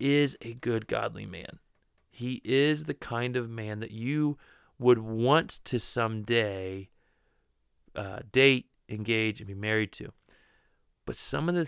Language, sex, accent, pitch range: English, male, American, 110-145 Hz